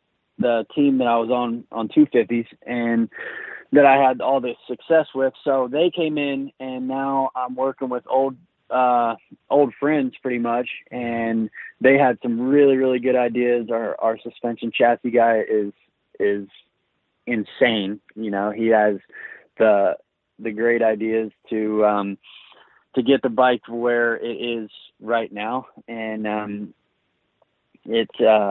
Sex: male